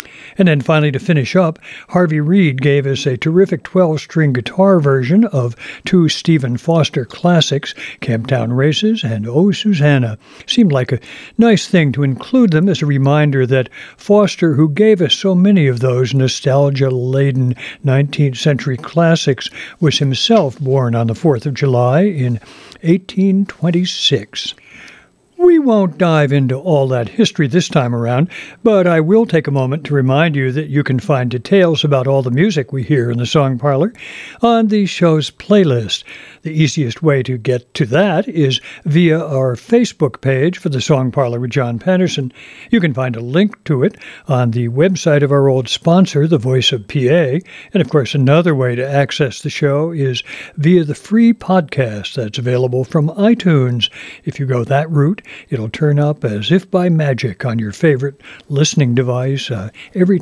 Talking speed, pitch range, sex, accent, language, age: 170 wpm, 130-175 Hz, male, American, English, 60-79